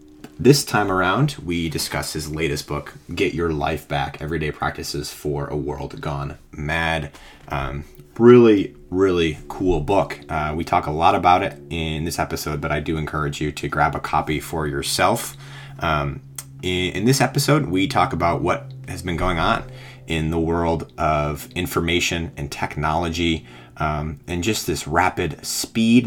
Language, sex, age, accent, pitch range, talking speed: English, male, 30-49, American, 75-100 Hz, 160 wpm